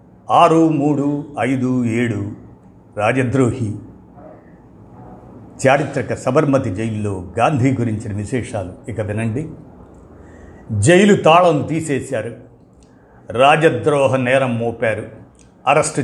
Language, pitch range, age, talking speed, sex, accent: Telugu, 110-150 Hz, 50-69, 75 wpm, male, native